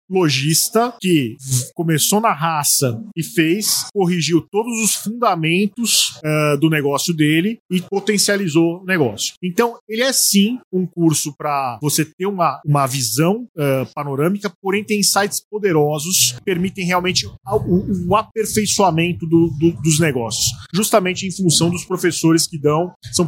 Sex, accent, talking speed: male, Brazilian, 130 wpm